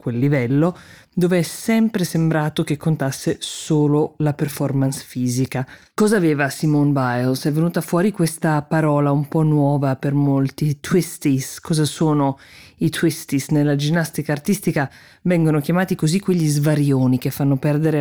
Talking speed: 140 wpm